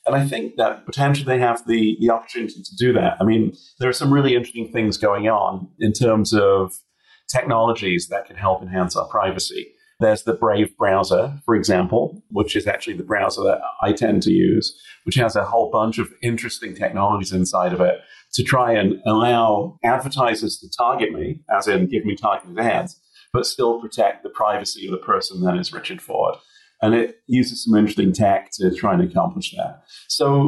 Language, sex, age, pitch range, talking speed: English, male, 40-59, 100-140 Hz, 195 wpm